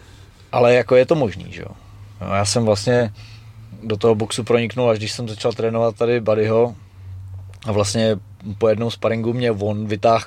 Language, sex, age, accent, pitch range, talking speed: Czech, male, 20-39, native, 100-120 Hz, 170 wpm